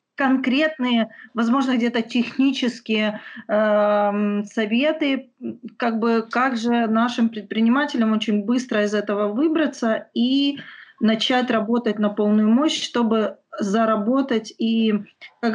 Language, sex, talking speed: Ukrainian, female, 100 wpm